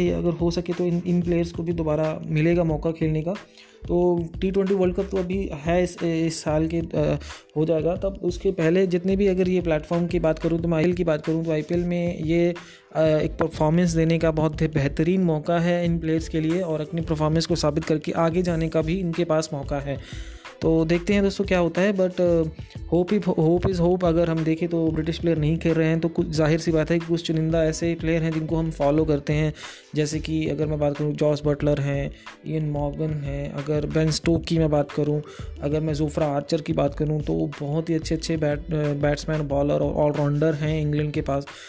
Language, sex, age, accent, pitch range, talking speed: Hindi, male, 20-39, native, 155-170 Hz, 220 wpm